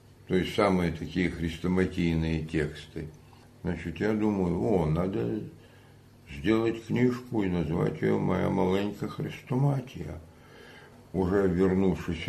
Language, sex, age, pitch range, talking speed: Russian, male, 60-79, 80-95 Hz, 105 wpm